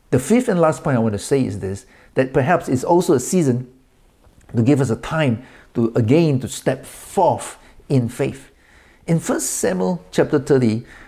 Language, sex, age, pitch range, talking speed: English, male, 50-69, 120-165 Hz, 185 wpm